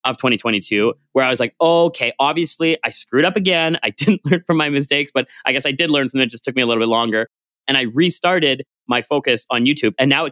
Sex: male